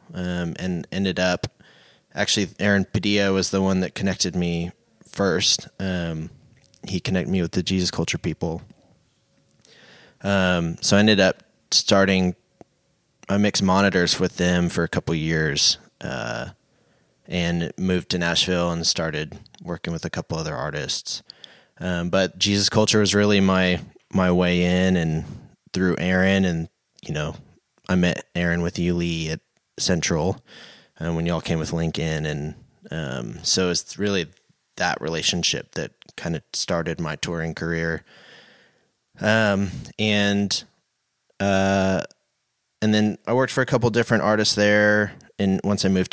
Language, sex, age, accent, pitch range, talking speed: English, male, 20-39, American, 85-100 Hz, 145 wpm